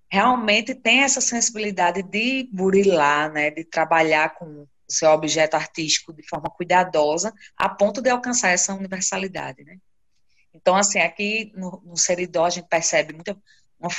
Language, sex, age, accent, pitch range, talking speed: Portuguese, female, 20-39, Brazilian, 150-195 Hz, 145 wpm